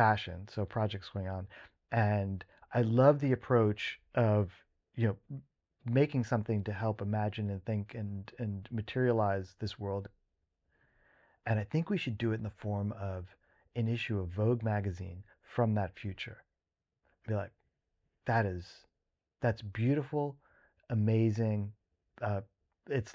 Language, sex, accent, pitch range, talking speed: English, male, American, 105-125 Hz, 135 wpm